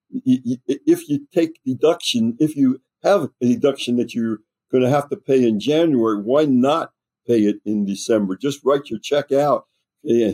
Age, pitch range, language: 60-79, 110-150 Hz, English